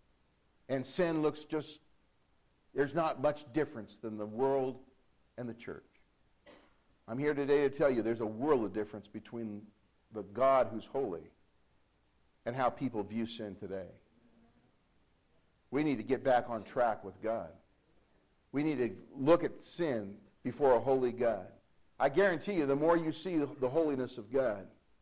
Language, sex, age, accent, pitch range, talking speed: English, male, 50-69, American, 105-145 Hz, 160 wpm